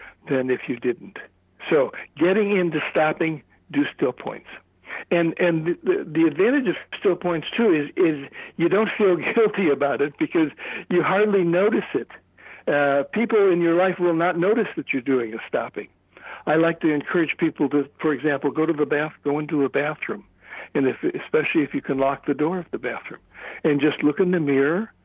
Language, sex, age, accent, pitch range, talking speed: English, male, 60-79, American, 140-180 Hz, 195 wpm